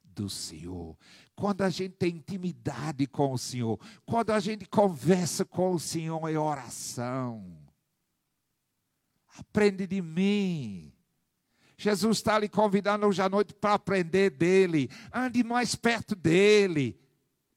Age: 60-79